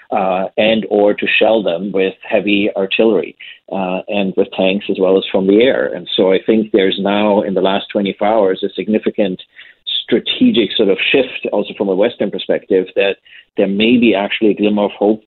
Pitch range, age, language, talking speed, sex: 95-110 Hz, 40-59, English, 195 wpm, male